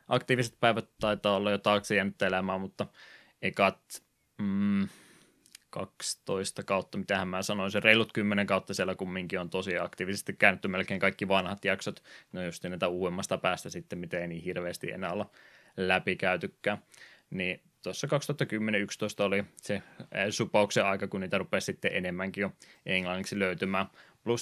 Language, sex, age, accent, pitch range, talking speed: Finnish, male, 20-39, native, 95-105 Hz, 140 wpm